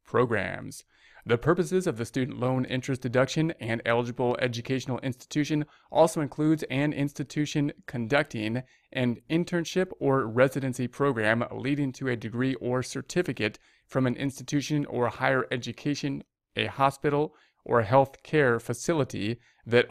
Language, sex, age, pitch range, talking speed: English, male, 30-49, 120-140 Hz, 125 wpm